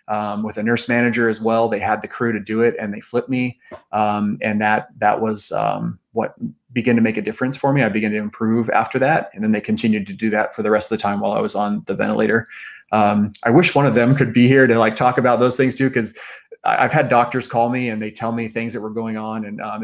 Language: English